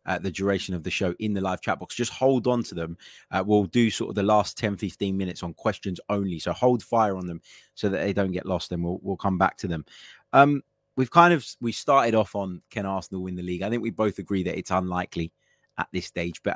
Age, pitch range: 20-39, 90-115 Hz